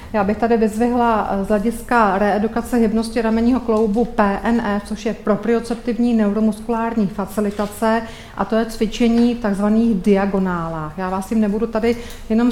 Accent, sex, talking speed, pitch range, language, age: native, female, 135 wpm, 205-235 Hz, Czech, 40-59